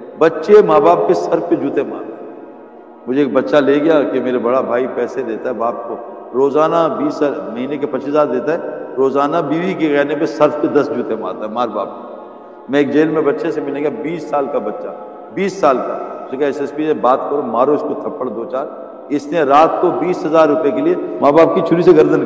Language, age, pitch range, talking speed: Urdu, 60-79, 145-195 Hz, 145 wpm